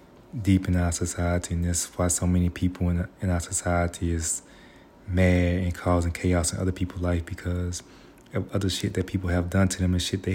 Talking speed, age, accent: 210 wpm, 30-49, American